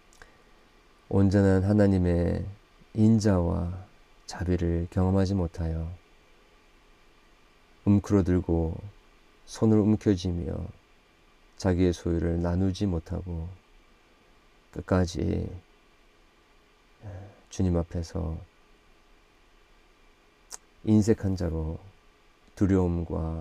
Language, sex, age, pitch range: Korean, male, 40-59, 85-95 Hz